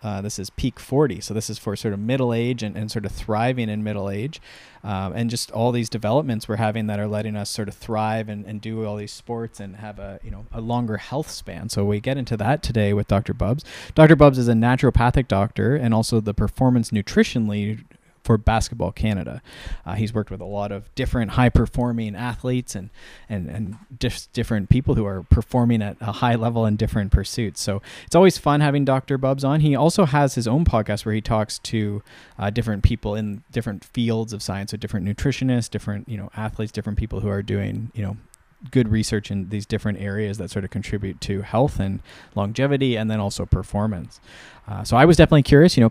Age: 20-39